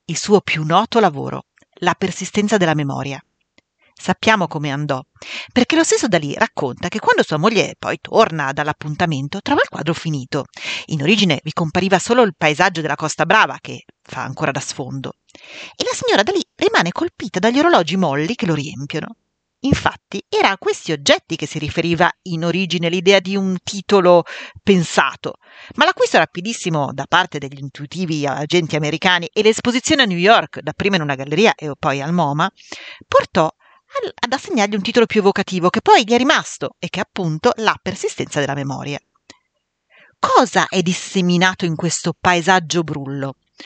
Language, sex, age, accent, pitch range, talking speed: Italian, female, 40-59, native, 155-215 Hz, 160 wpm